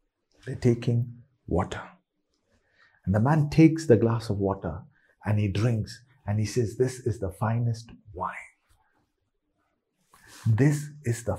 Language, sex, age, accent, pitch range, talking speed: English, male, 50-69, Indian, 100-130 Hz, 130 wpm